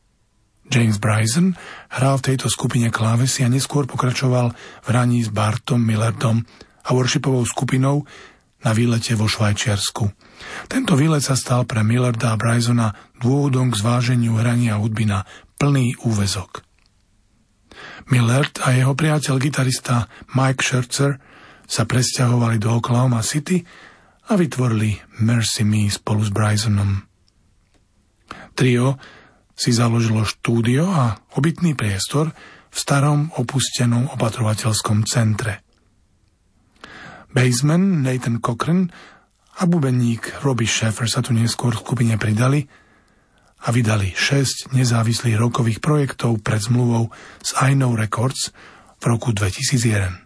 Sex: male